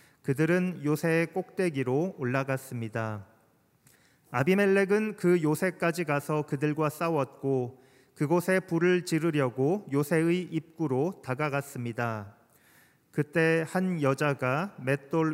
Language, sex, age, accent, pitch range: Korean, male, 40-59, native, 135-175 Hz